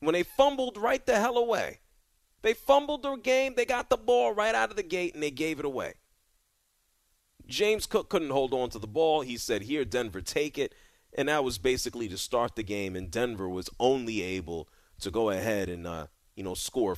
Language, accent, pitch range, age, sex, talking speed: English, American, 105-165 Hz, 40-59, male, 210 wpm